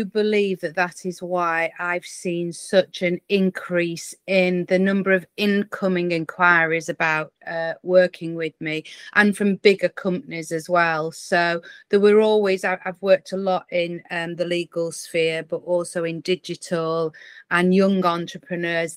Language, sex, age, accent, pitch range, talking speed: English, female, 30-49, British, 175-205 Hz, 150 wpm